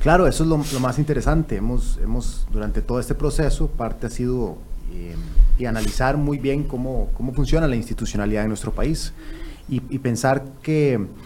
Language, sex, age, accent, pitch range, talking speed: Spanish, male, 30-49, Mexican, 115-150 Hz, 175 wpm